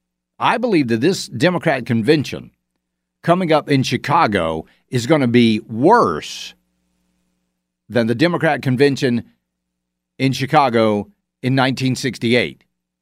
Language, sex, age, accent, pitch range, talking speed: English, male, 50-69, American, 100-165 Hz, 105 wpm